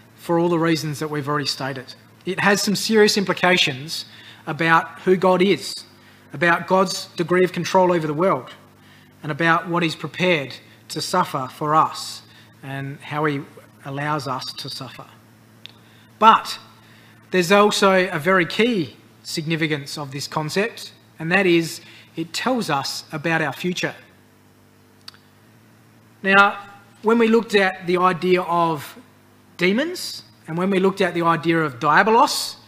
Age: 30-49